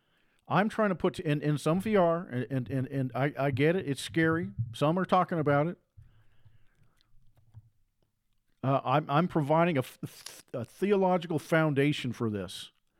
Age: 50-69